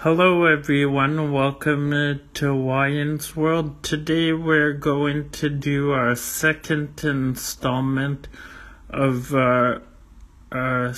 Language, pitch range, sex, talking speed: English, 120-140 Hz, male, 95 wpm